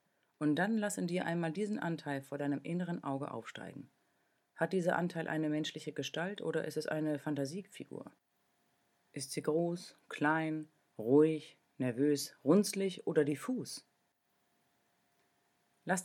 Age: 40-59